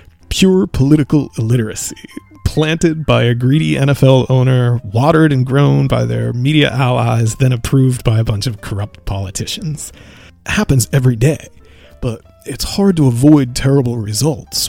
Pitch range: 110-140 Hz